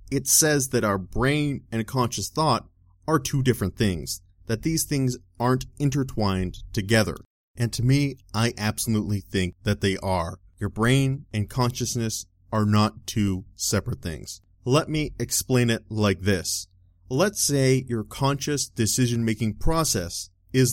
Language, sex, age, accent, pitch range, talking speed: English, male, 30-49, American, 95-130 Hz, 145 wpm